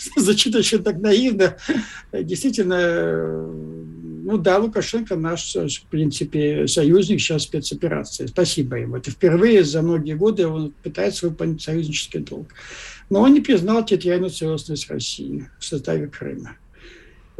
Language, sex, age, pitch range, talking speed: Russian, male, 60-79, 150-190 Hz, 125 wpm